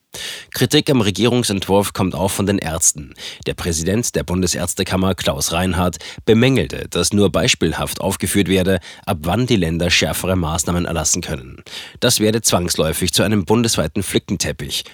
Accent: German